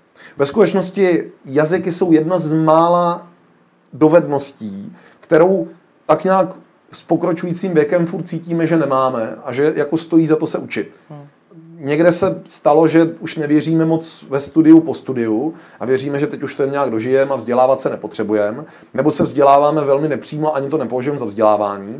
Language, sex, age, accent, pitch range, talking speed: Czech, male, 30-49, native, 125-155 Hz, 165 wpm